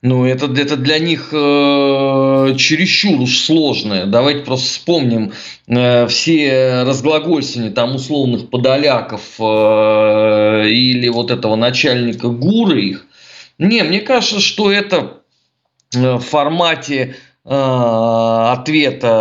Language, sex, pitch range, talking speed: Russian, male, 120-160 Hz, 105 wpm